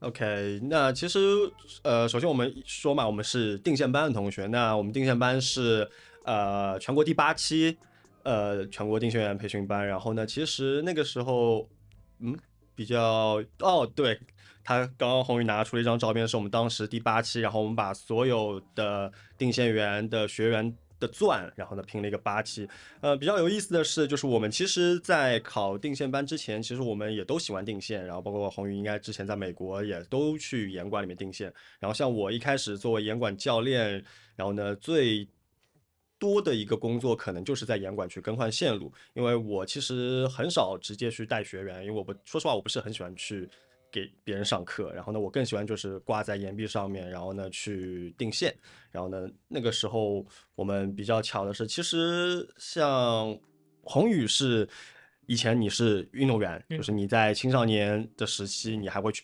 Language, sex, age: Chinese, male, 20-39